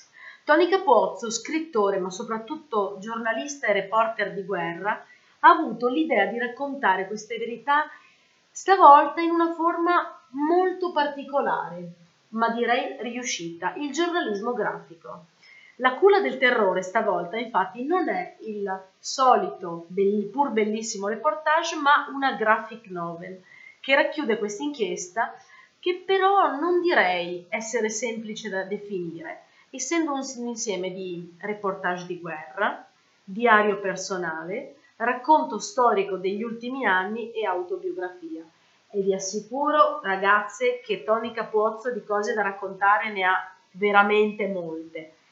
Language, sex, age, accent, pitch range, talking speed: Italian, female, 30-49, native, 195-270 Hz, 120 wpm